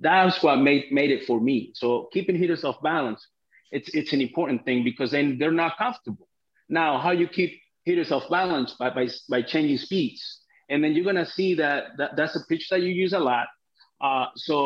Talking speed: 210 wpm